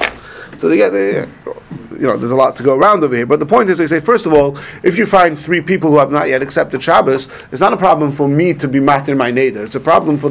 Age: 40-59